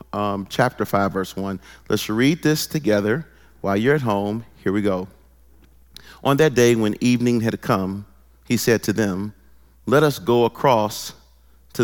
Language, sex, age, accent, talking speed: English, male, 40-59, American, 155 wpm